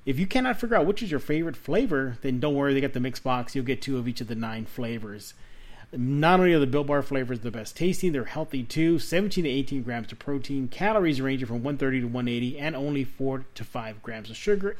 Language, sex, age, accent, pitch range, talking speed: English, male, 30-49, American, 125-160 Hz, 245 wpm